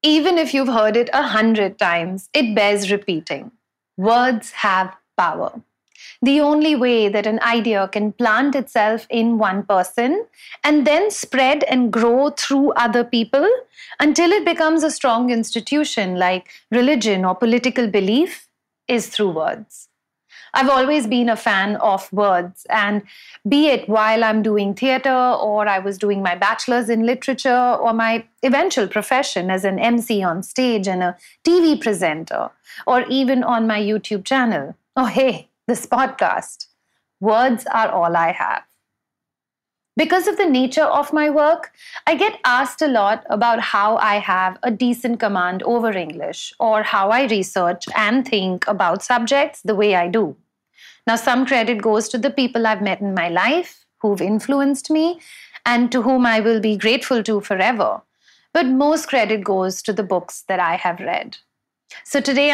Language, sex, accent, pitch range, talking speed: English, female, Indian, 210-270 Hz, 160 wpm